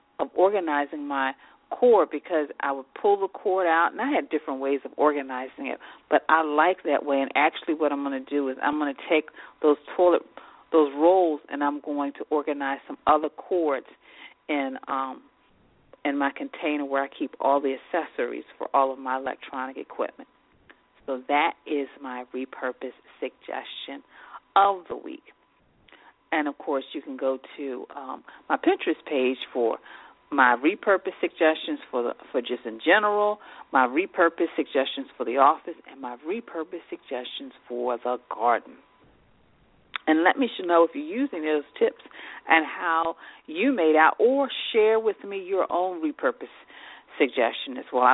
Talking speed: 160 wpm